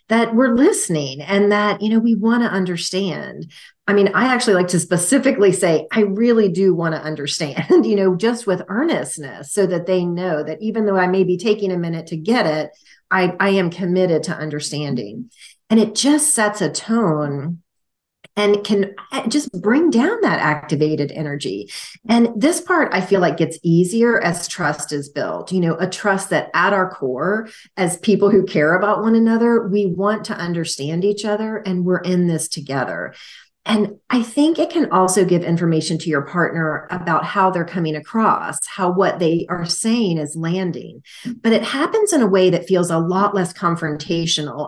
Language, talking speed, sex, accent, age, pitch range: English, 185 wpm, female, American, 40-59, 165-215 Hz